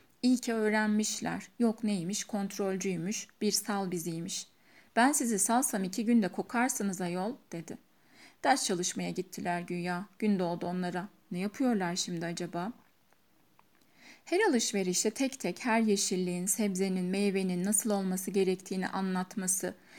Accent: native